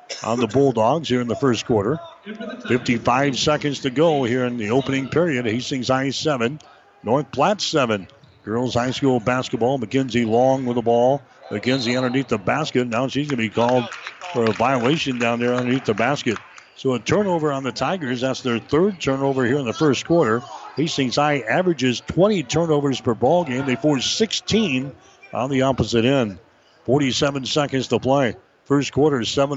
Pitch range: 120-145 Hz